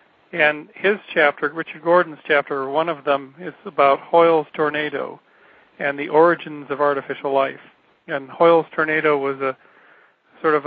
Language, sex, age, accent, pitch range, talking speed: English, male, 40-59, American, 140-165 Hz, 150 wpm